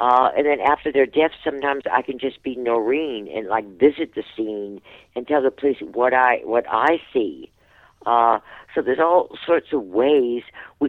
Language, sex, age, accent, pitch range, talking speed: English, female, 50-69, American, 130-165 Hz, 185 wpm